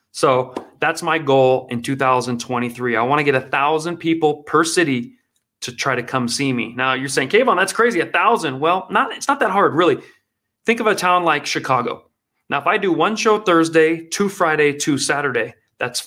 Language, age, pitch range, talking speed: English, 30-49, 125-165 Hz, 195 wpm